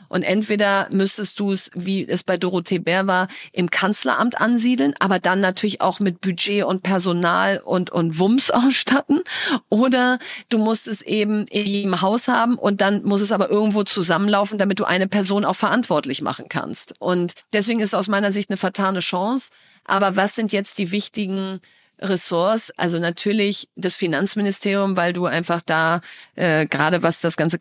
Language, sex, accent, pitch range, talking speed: German, female, German, 180-205 Hz, 170 wpm